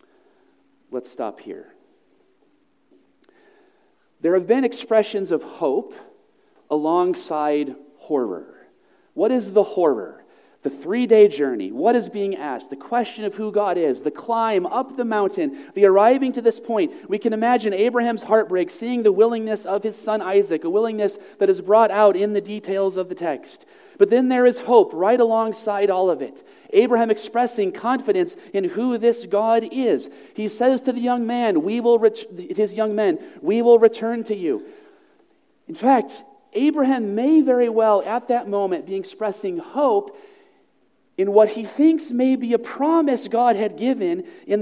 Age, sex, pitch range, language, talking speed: 40-59, male, 210-320 Hz, English, 165 wpm